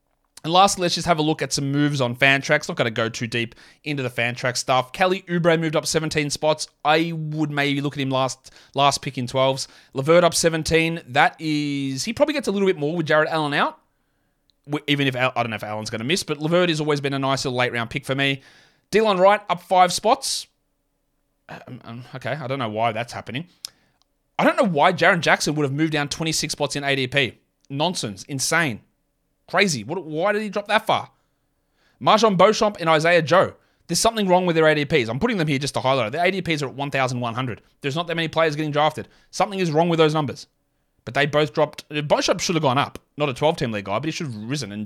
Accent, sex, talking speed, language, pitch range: Australian, male, 235 wpm, English, 130-170 Hz